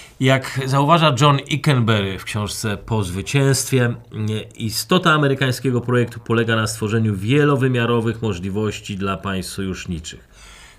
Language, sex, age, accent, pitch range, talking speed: Polish, male, 40-59, native, 95-130 Hz, 105 wpm